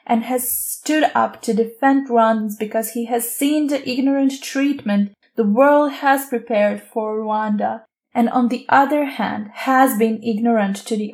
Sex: female